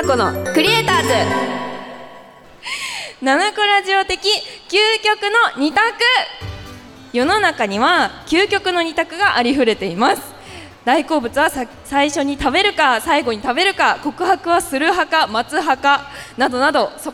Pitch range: 270-370 Hz